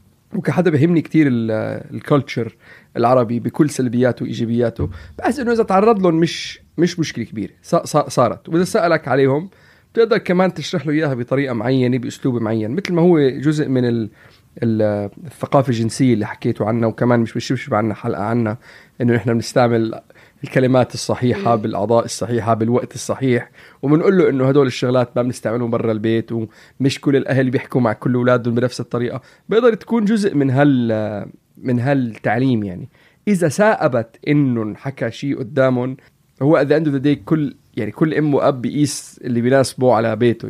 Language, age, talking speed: Arabic, 30-49, 150 wpm